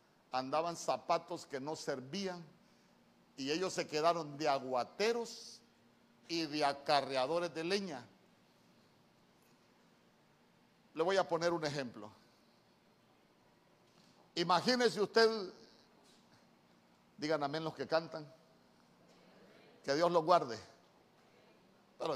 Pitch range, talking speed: 155-210 Hz, 90 wpm